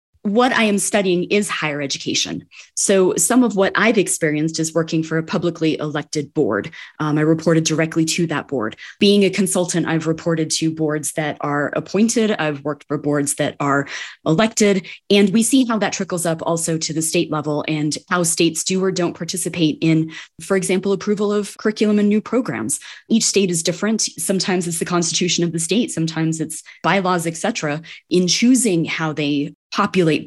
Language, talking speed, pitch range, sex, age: English, 185 wpm, 155-195 Hz, female, 20-39